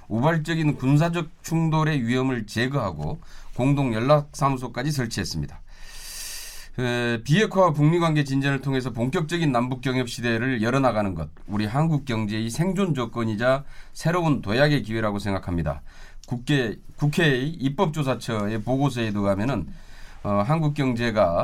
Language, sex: Korean, male